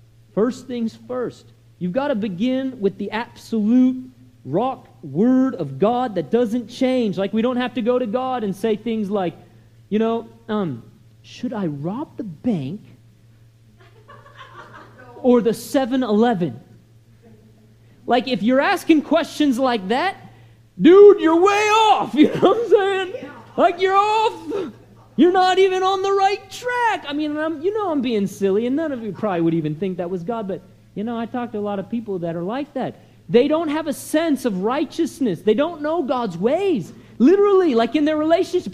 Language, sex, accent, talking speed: English, male, American, 180 wpm